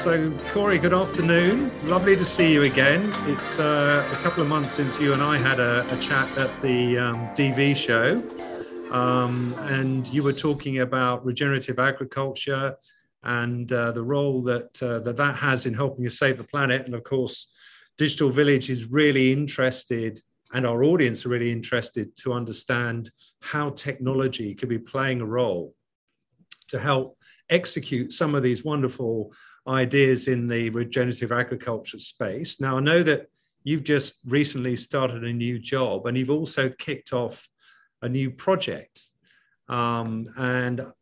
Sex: male